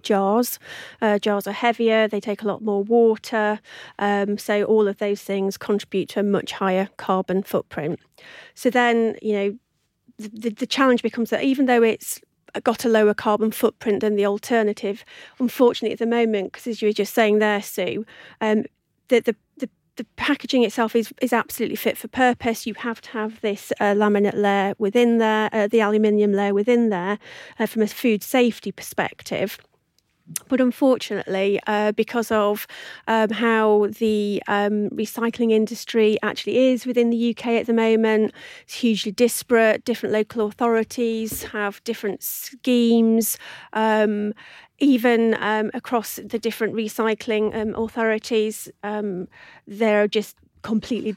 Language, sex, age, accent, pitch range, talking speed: English, female, 40-59, British, 210-235 Hz, 155 wpm